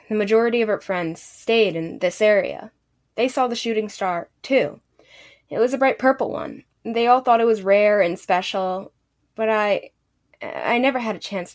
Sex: female